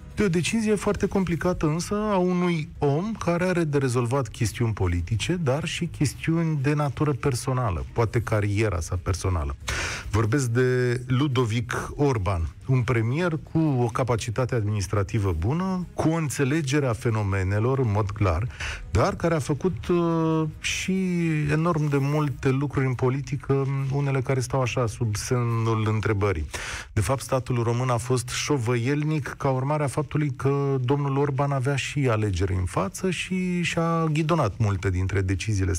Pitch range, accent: 105-155 Hz, native